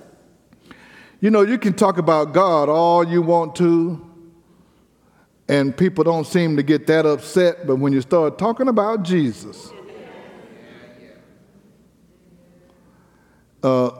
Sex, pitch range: male, 140-180 Hz